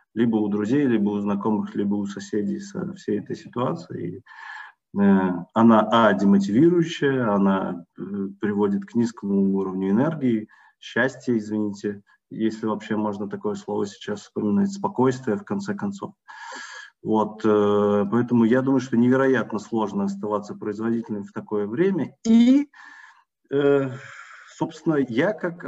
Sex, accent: male, native